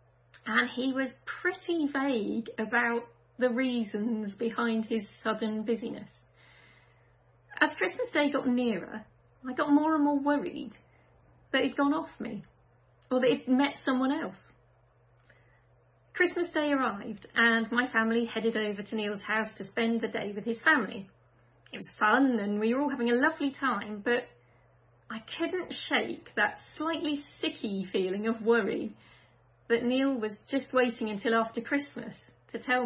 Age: 40-59